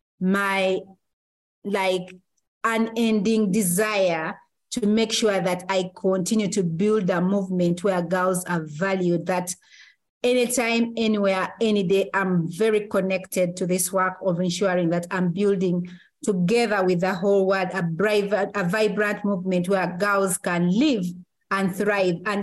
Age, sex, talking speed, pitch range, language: 40-59, female, 135 wpm, 185-215 Hz, English